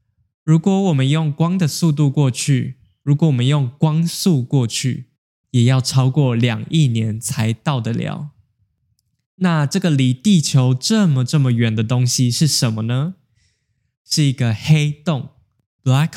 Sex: male